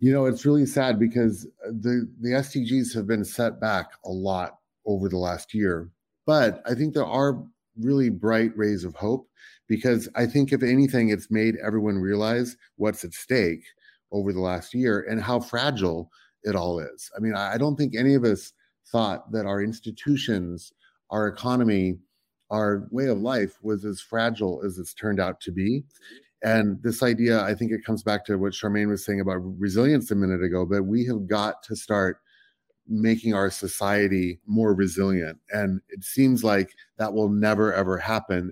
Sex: male